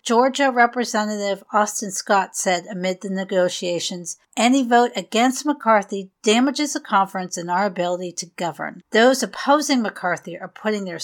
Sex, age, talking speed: female, 50-69, 140 wpm